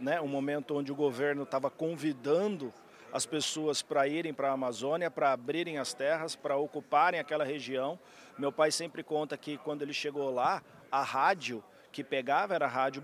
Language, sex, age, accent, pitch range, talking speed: Portuguese, male, 50-69, Brazilian, 140-160 Hz, 180 wpm